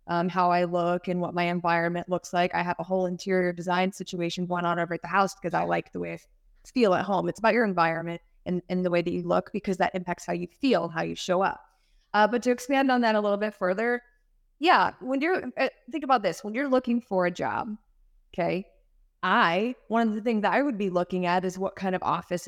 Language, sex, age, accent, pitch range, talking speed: English, female, 20-39, American, 175-215 Hz, 250 wpm